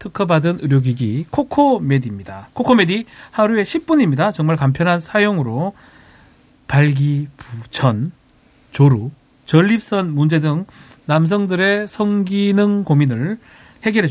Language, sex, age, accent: Korean, male, 40-59, native